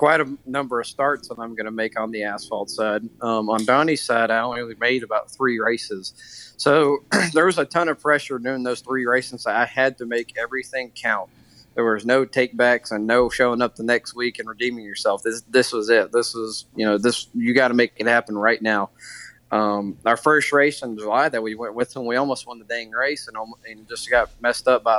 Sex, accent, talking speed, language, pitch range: male, American, 235 wpm, English, 115-130 Hz